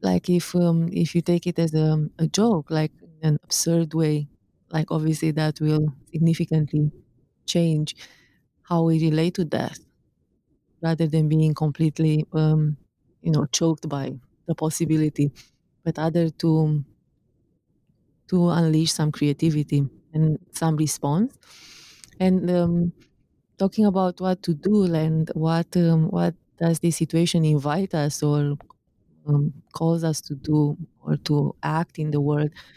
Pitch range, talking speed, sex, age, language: 150-170 Hz, 140 wpm, female, 30-49, English